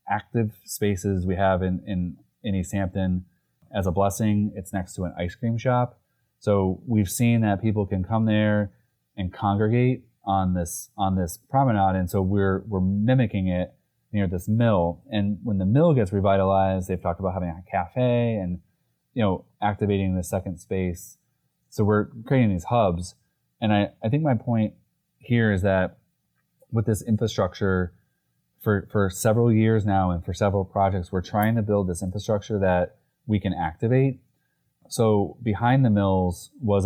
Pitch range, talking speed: 95-110 Hz, 165 wpm